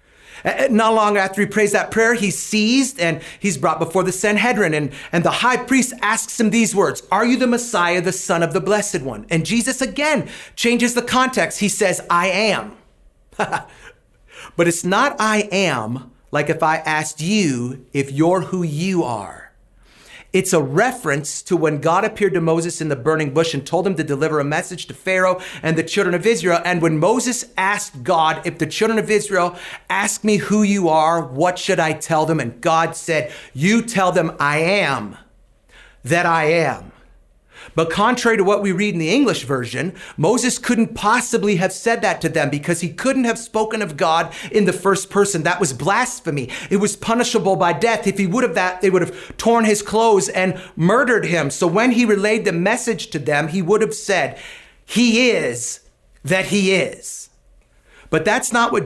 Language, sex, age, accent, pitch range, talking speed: English, male, 40-59, American, 165-220 Hz, 195 wpm